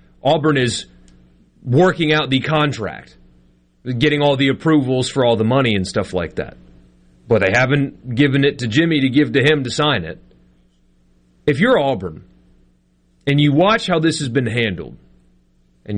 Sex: male